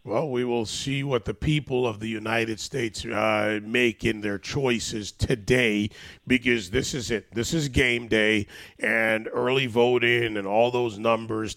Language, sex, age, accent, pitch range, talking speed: English, male, 40-59, American, 105-125 Hz, 165 wpm